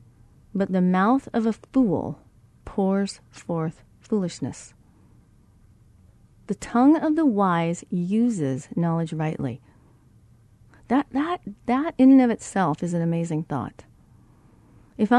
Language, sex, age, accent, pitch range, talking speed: English, female, 40-59, American, 140-220 Hz, 110 wpm